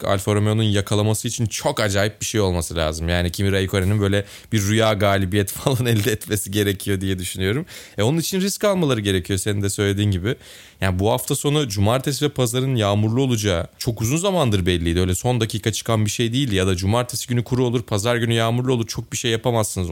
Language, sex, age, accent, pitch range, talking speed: Turkish, male, 30-49, native, 100-130 Hz, 205 wpm